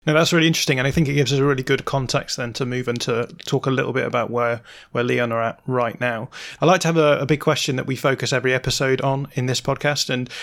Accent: British